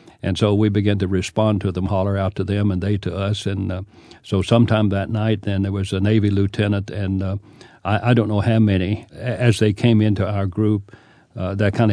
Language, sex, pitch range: English, male, 95-110 Hz